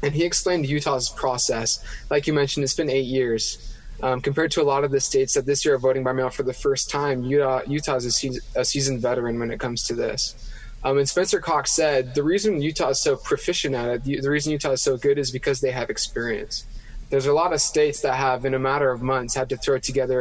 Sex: male